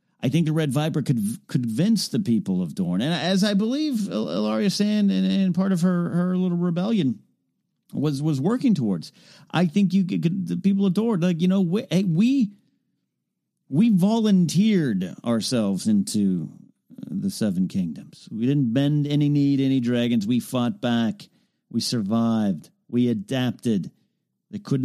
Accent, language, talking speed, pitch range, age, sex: American, English, 160 wpm, 135-205 Hz, 50-69, male